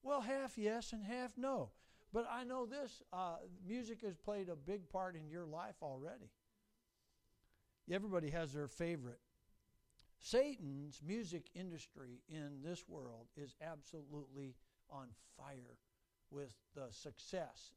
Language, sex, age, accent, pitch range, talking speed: English, male, 60-79, American, 145-180 Hz, 130 wpm